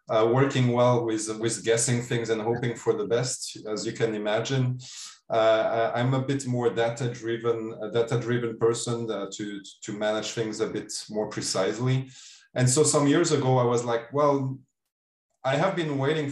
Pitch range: 115-135 Hz